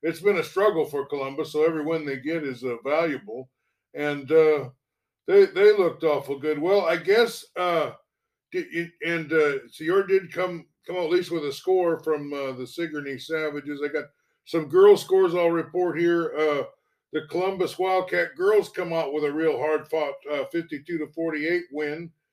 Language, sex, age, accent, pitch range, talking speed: English, male, 60-79, American, 150-185 Hz, 175 wpm